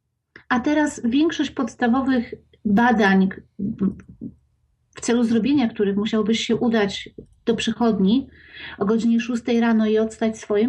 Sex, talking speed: female, 120 wpm